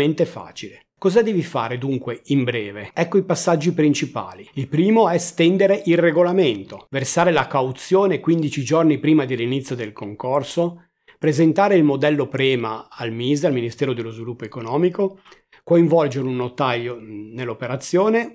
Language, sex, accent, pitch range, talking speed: Italian, male, native, 135-185 Hz, 135 wpm